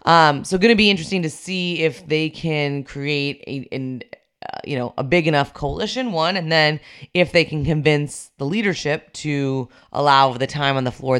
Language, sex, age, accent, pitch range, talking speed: English, female, 20-39, American, 135-180 Hz, 195 wpm